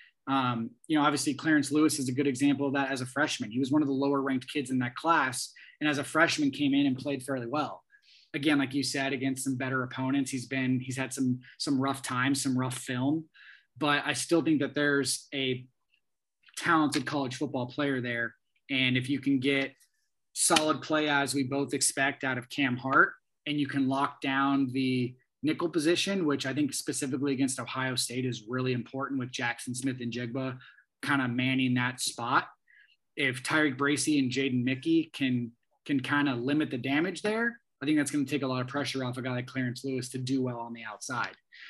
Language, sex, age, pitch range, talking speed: English, male, 20-39, 130-145 Hz, 210 wpm